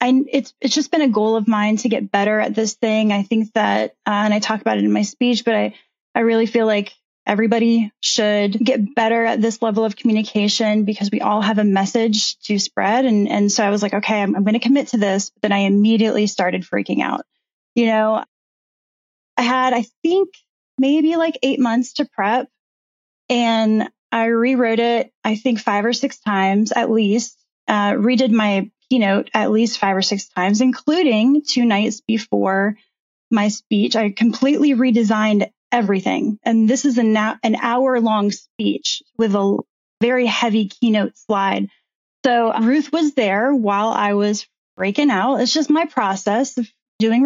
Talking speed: 180 wpm